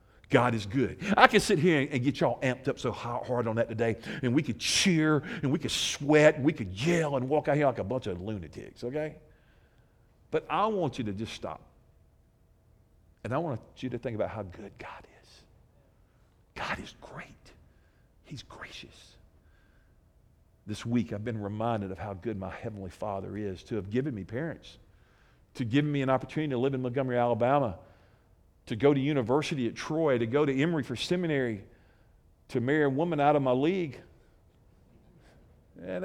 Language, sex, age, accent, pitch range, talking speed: English, male, 50-69, American, 110-155 Hz, 185 wpm